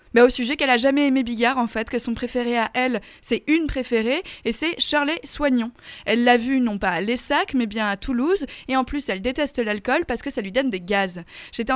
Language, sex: French, female